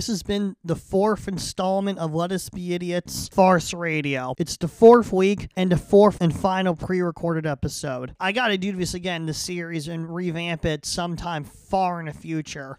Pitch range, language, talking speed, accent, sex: 160-185 Hz, English, 185 wpm, American, male